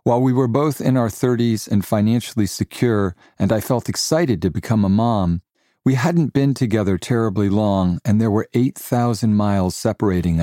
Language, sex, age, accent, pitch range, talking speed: English, male, 40-59, American, 100-120 Hz, 175 wpm